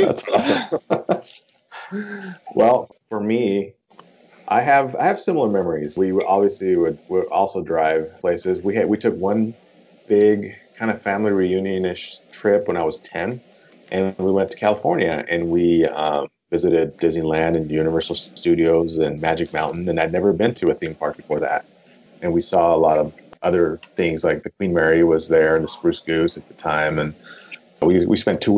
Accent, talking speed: American, 180 wpm